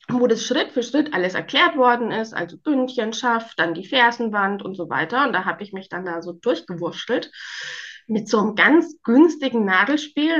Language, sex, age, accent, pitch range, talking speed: German, female, 20-39, German, 185-250 Hz, 185 wpm